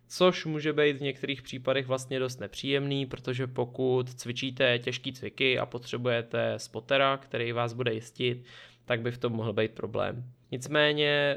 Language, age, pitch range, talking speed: Czech, 20-39, 115-130 Hz, 155 wpm